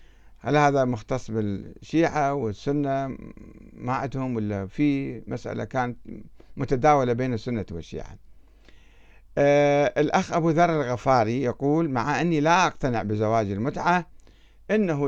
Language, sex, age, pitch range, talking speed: Arabic, male, 60-79, 110-160 Hz, 105 wpm